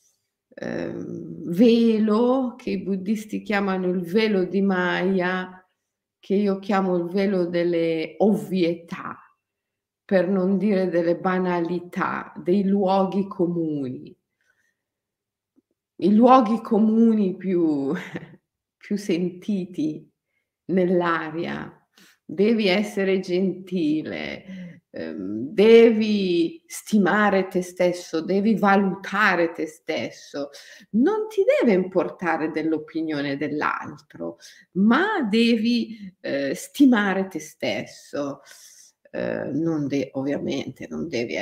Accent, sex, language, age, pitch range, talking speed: native, female, Italian, 50-69, 165-205 Hz, 85 wpm